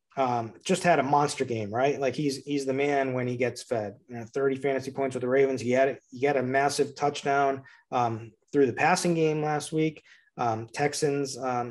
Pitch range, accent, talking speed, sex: 125-145 Hz, American, 210 wpm, male